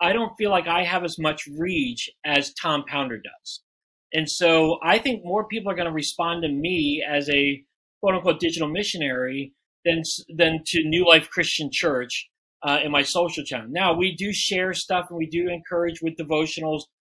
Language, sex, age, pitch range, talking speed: English, male, 40-59, 155-195 Hz, 190 wpm